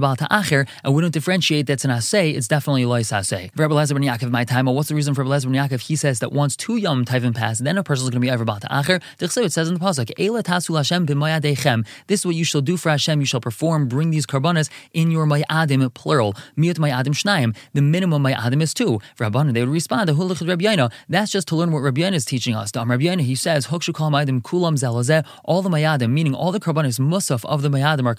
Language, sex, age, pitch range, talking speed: English, male, 20-39, 135-165 Hz, 240 wpm